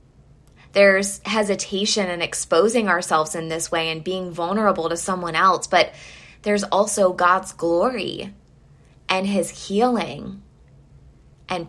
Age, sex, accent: 20-39, female, American